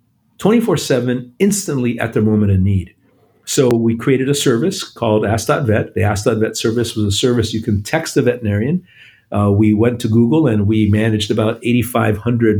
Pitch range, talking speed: 105-130 Hz, 160 wpm